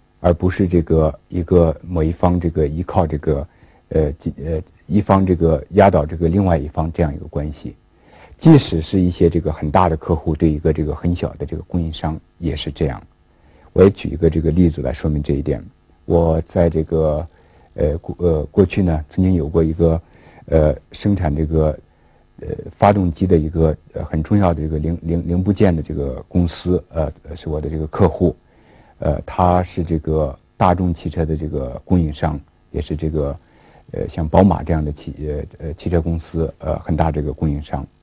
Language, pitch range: Chinese, 75-85 Hz